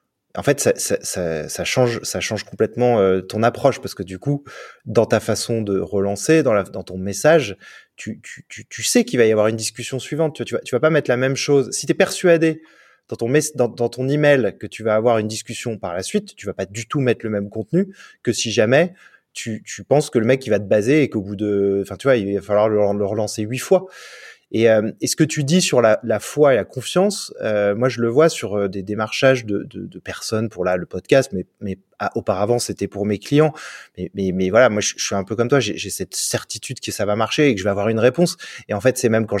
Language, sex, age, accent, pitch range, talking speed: French, male, 20-39, French, 105-145 Hz, 270 wpm